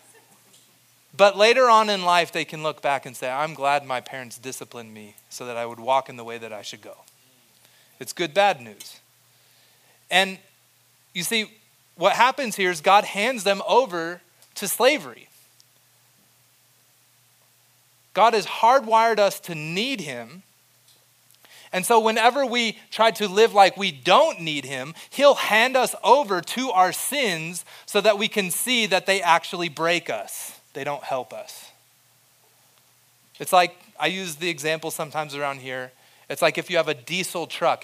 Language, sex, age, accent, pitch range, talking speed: English, male, 30-49, American, 135-200 Hz, 165 wpm